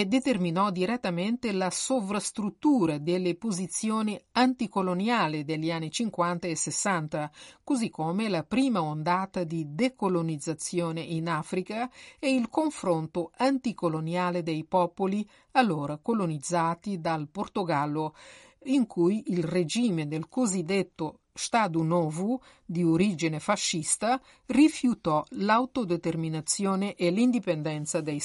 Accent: native